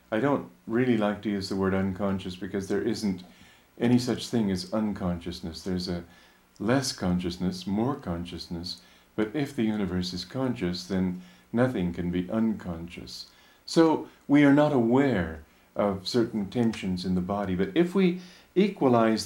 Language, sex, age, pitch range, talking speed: English, male, 50-69, 90-115 Hz, 155 wpm